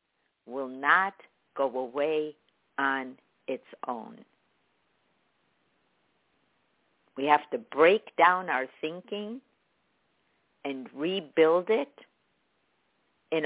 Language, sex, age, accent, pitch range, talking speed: English, female, 50-69, American, 150-200 Hz, 80 wpm